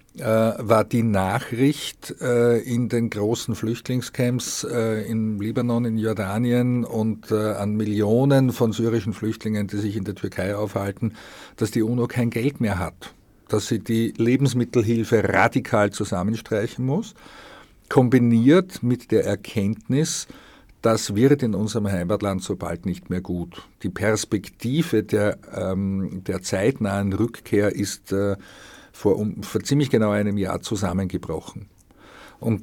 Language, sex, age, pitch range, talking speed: German, male, 50-69, 105-120 Hz, 125 wpm